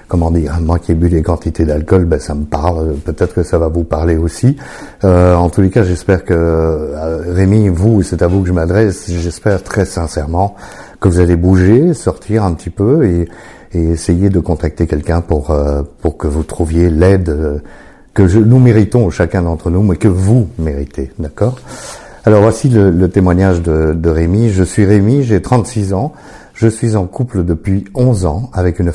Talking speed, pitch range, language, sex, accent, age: 195 wpm, 80-100 Hz, French, male, French, 50-69